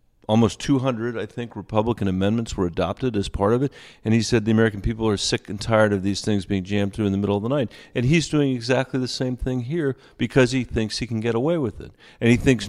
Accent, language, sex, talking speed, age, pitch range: American, English, male, 255 wpm, 40-59, 95-120 Hz